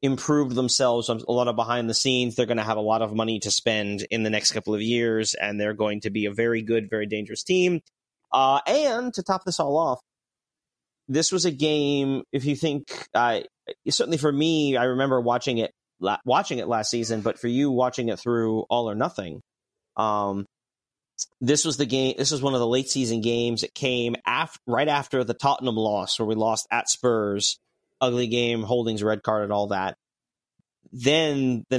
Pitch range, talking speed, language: 110-135 Hz, 205 wpm, English